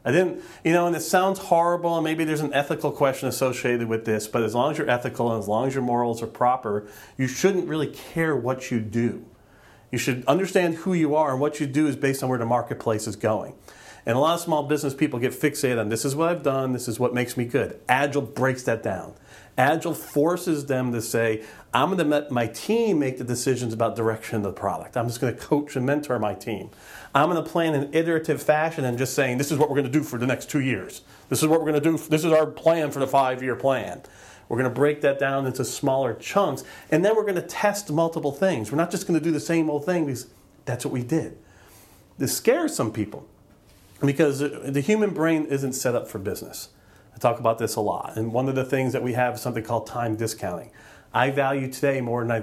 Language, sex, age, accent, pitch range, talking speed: English, male, 40-59, American, 120-155 Hz, 250 wpm